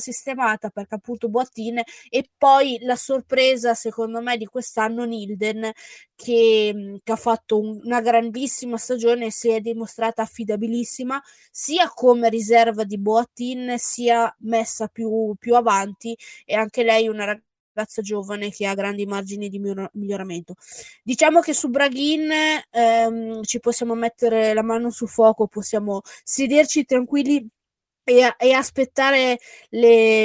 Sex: female